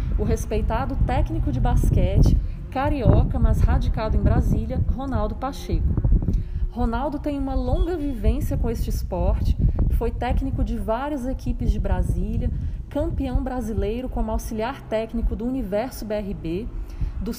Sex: female